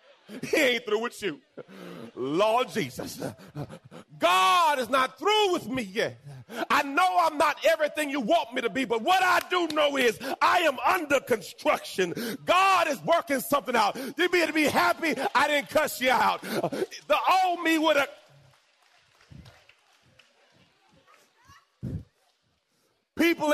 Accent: American